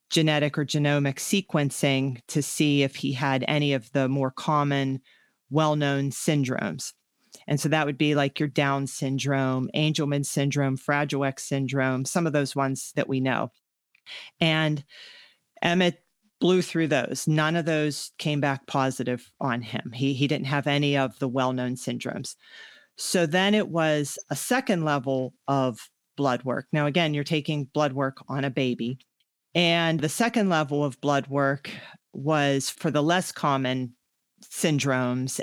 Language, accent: English, American